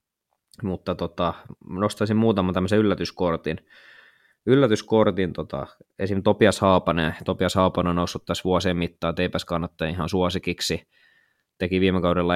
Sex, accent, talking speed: male, native, 110 wpm